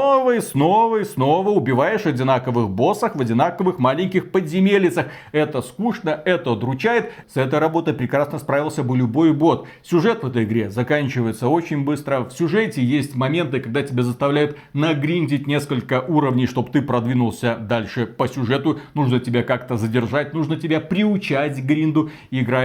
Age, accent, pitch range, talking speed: 40-59, native, 130-165 Hz, 150 wpm